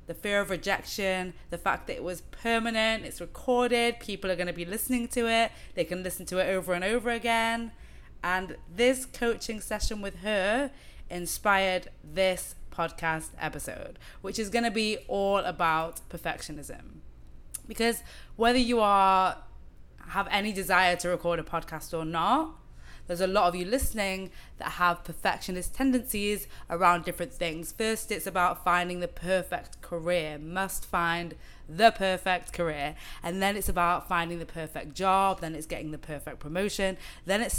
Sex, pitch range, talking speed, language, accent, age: female, 170-205 Hz, 160 wpm, English, British, 20-39